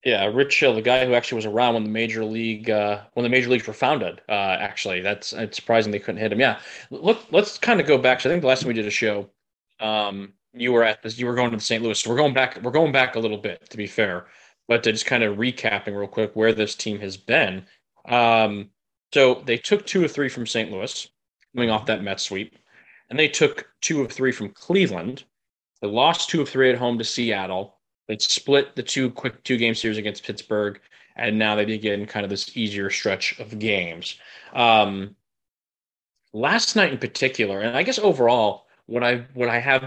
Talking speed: 225 wpm